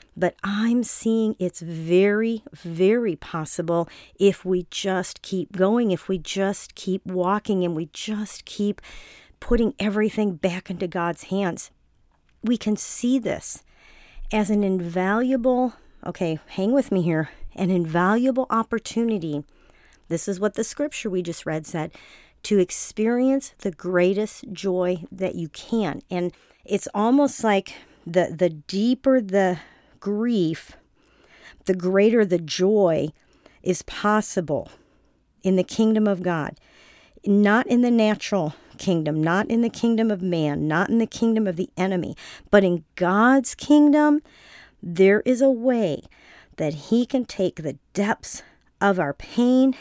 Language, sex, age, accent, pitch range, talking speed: English, female, 40-59, American, 180-225 Hz, 135 wpm